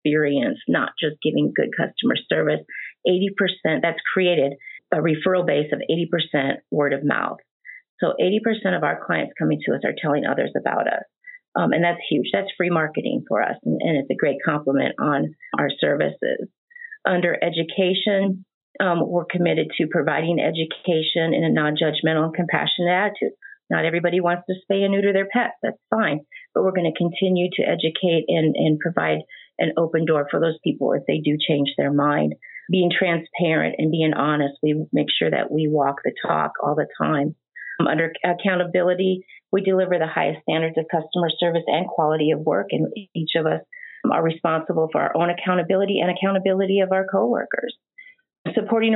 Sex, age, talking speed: female, 30-49, 175 wpm